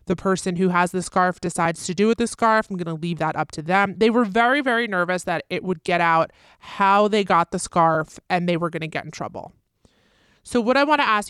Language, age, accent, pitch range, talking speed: English, 20-39, American, 165-195 Hz, 260 wpm